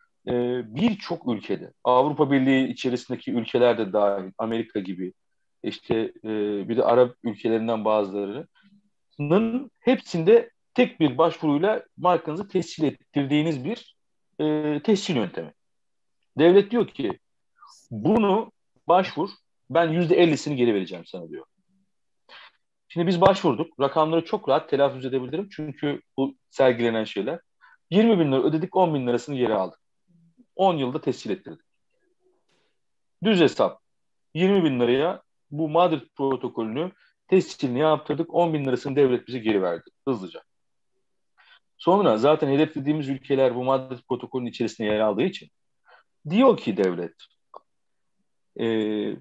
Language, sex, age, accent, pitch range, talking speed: Turkish, male, 50-69, native, 120-180 Hz, 115 wpm